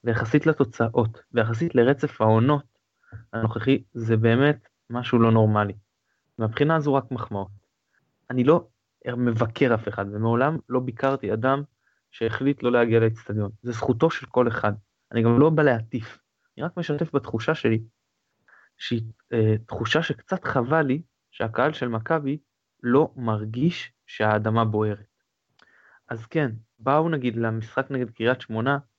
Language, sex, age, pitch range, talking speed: Hebrew, male, 20-39, 110-135 Hz, 130 wpm